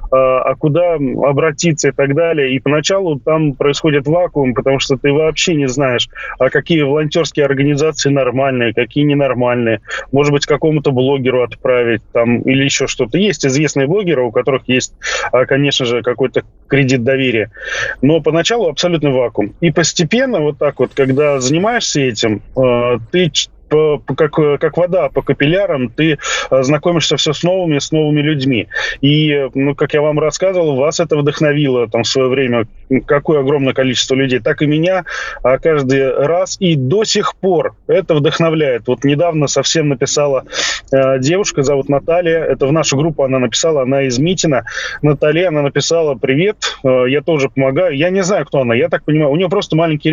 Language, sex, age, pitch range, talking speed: Russian, male, 20-39, 135-160 Hz, 160 wpm